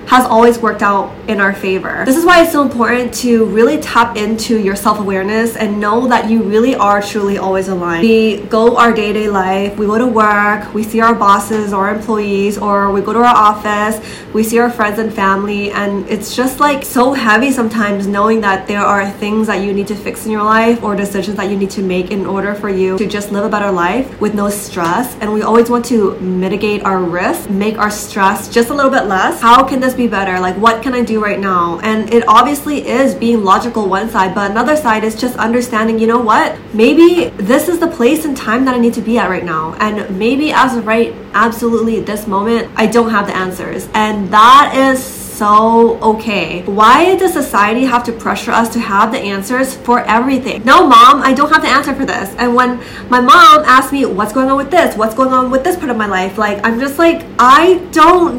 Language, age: English, 20-39